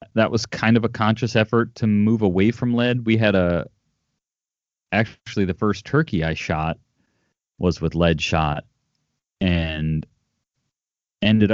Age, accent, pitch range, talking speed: 30-49, American, 85-105 Hz, 140 wpm